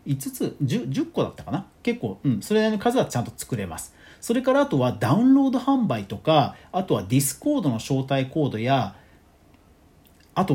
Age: 40-59